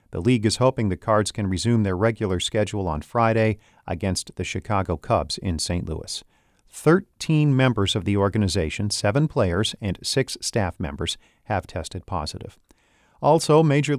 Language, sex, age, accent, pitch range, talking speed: English, male, 40-59, American, 95-125 Hz, 155 wpm